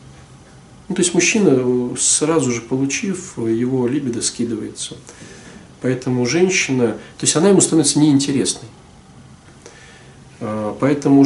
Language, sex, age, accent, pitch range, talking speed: Russian, male, 40-59, native, 125-180 Hz, 100 wpm